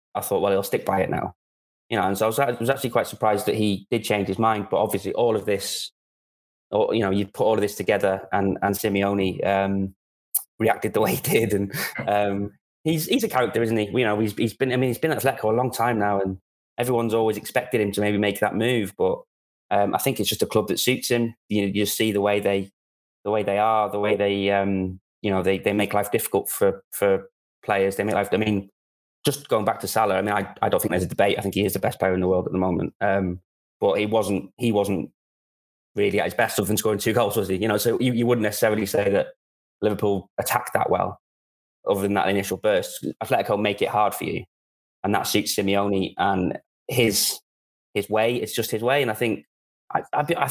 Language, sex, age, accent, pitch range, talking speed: English, male, 20-39, British, 95-115 Hz, 250 wpm